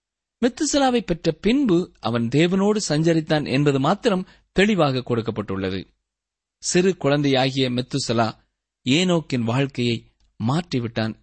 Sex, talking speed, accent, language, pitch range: male, 85 wpm, native, Tamil, 115-180 Hz